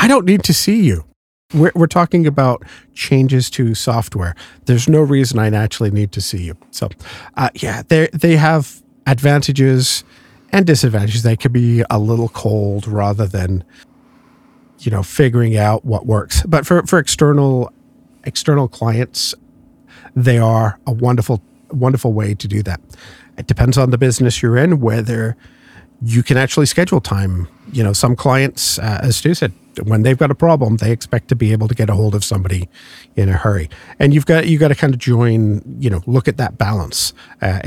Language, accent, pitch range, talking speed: English, American, 105-140 Hz, 185 wpm